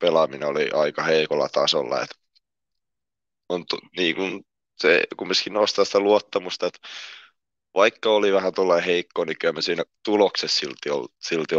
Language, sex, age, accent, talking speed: Finnish, male, 20-39, native, 145 wpm